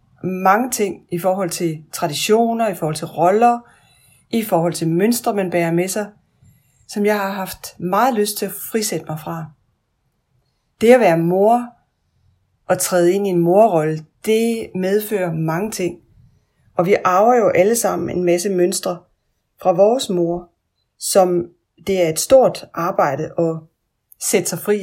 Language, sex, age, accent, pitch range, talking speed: Danish, female, 30-49, native, 160-210 Hz, 155 wpm